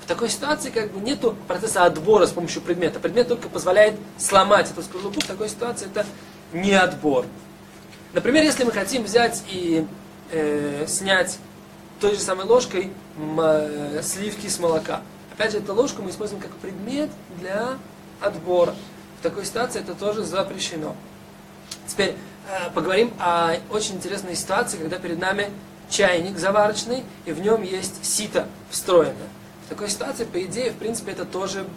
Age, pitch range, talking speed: 20-39, 170-210 Hz, 155 wpm